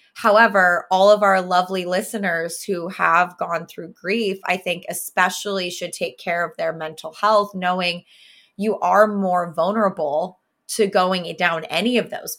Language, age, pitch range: English, 20-39, 170-200 Hz